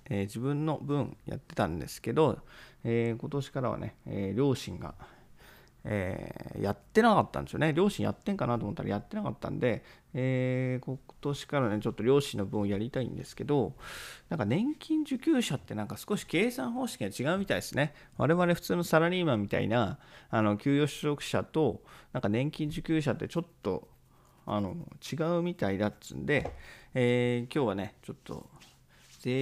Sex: male